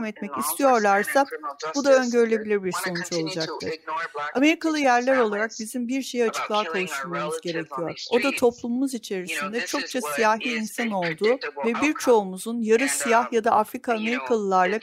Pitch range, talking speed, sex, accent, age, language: 195-245 Hz, 135 wpm, female, native, 50-69, Turkish